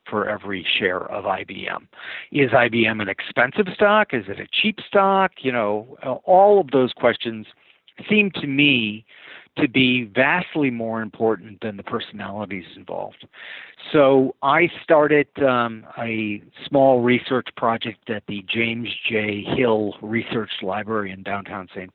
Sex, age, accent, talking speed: male, 50-69, American, 140 wpm